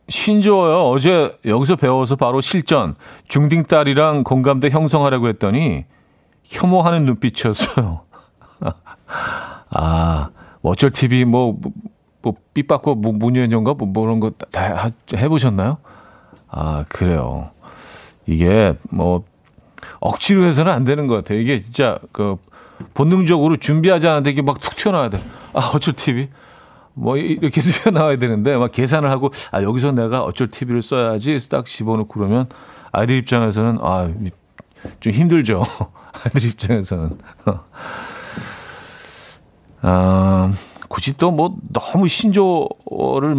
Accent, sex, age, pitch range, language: native, male, 40-59, 105-145 Hz, Korean